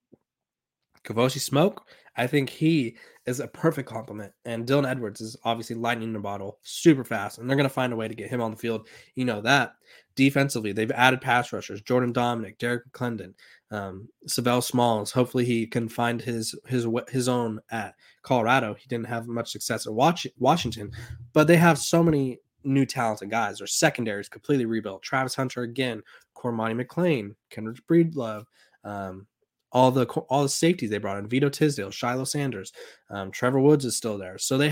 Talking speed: 180 wpm